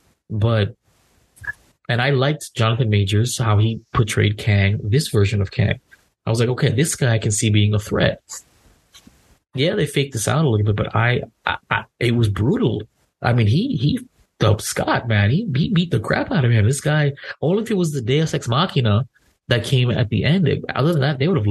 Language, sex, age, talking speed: English, male, 30-49, 215 wpm